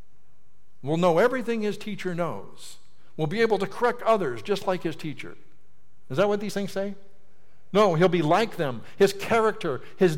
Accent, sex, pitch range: American, male, 140-195 Hz